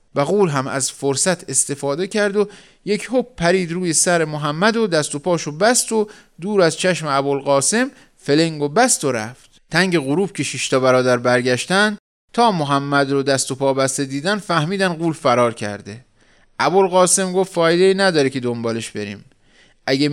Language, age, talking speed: Persian, 30-49, 160 wpm